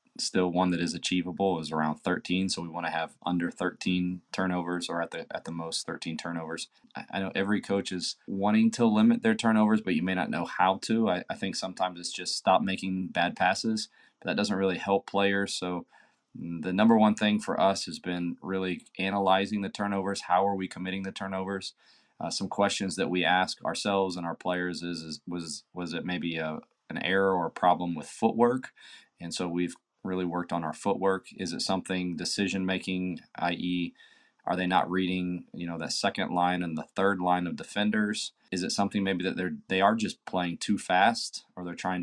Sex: male